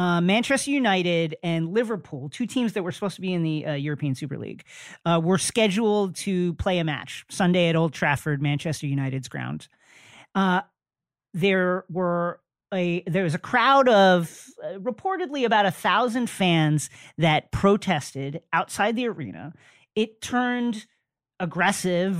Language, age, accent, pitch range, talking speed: English, 40-59, American, 170-230 Hz, 150 wpm